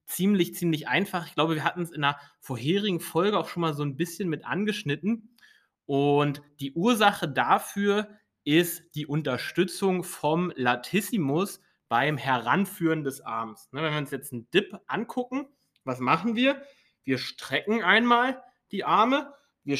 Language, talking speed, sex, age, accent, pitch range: English, 150 wpm, male, 30-49, German, 140-205 Hz